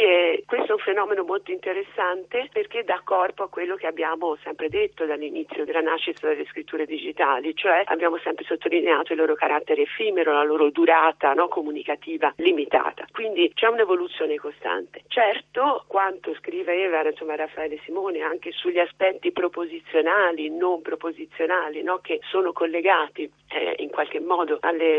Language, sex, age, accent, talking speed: Italian, female, 50-69, native, 145 wpm